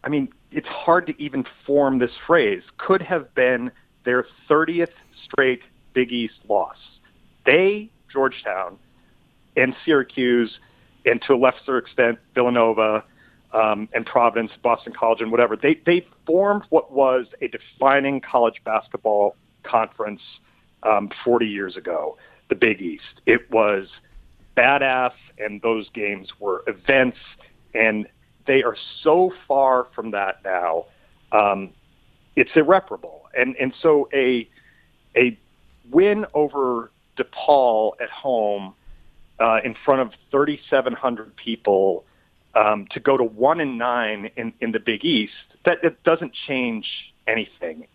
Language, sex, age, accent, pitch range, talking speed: English, male, 40-59, American, 115-145 Hz, 130 wpm